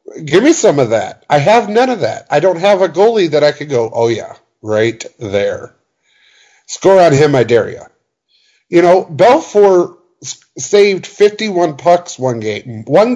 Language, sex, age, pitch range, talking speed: English, male, 50-69, 145-195 Hz, 175 wpm